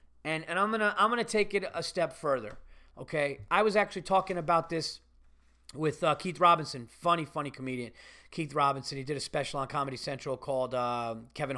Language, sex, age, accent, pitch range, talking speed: English, male, 30-49, American, 130-175 Hz, 190 wpm